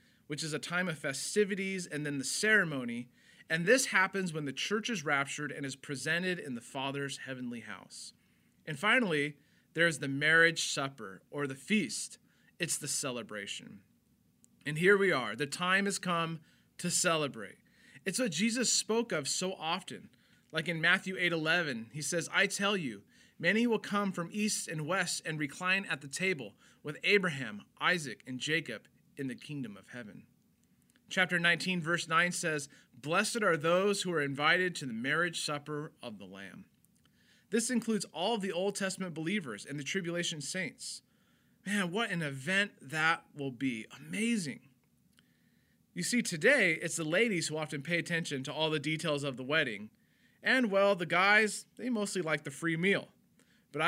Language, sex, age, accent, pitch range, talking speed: English, male, 30-49, American, 145-195 Hz, 170 wpm